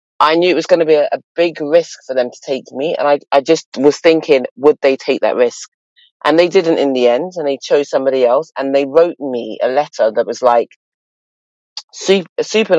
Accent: British